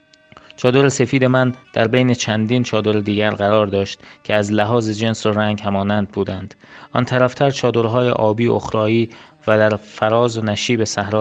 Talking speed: 155 wpm